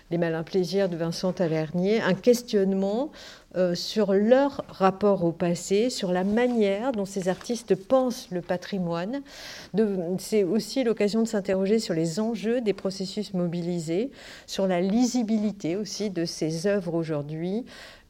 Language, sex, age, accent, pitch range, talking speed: French, female, 50-69, French, 170-210 Hz, 140 wpm